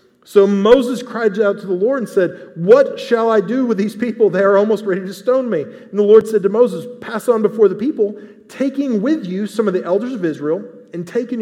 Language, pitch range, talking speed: English, 195-250 Hz, 235 wpm